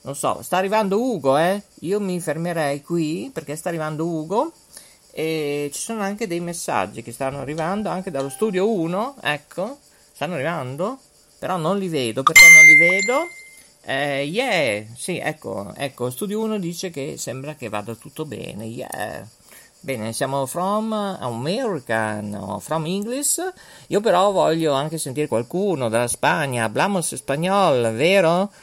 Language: Italian